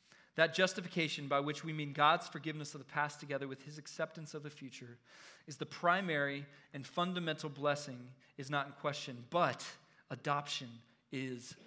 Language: English